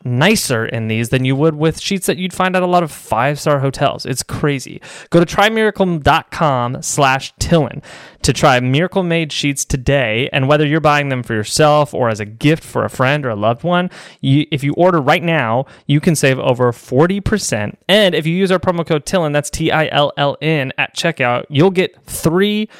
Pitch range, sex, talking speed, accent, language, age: 125-160 Hz, male, 190 wpm, American, English, 20-39